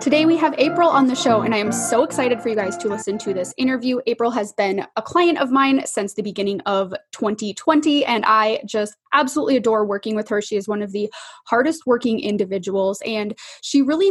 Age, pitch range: 20-39, 210-275 Hz